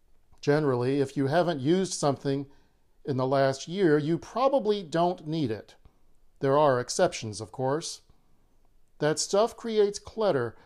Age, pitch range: 50-69, 110-185 Hz